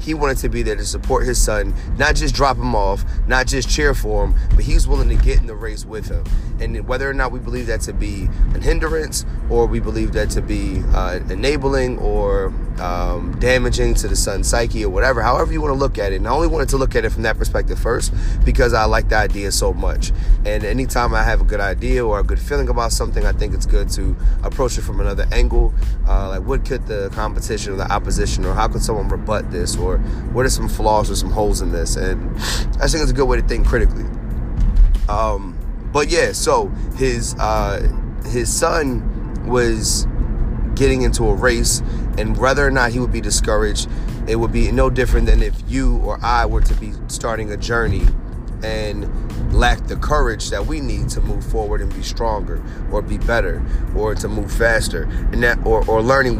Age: 30-49